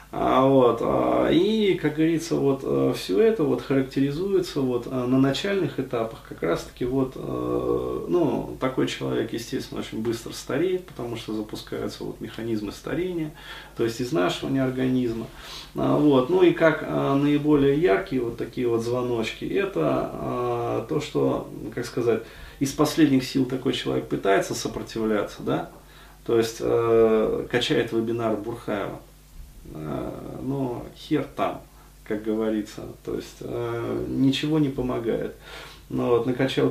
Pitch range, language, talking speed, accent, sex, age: 115-145 Hz, Russian, 105 wpm, native, male, 20-39